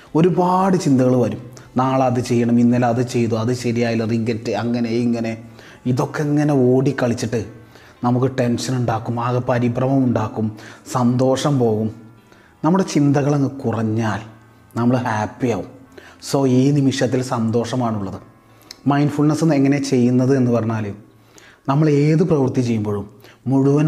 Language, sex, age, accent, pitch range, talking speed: Malayalam, male, 30-49, native, 115-135 Hz, 110 wpm